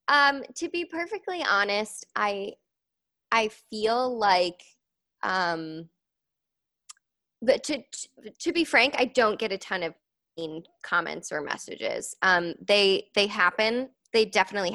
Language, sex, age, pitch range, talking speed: English, female, 20-39, 180-235 Hz, 130 wpm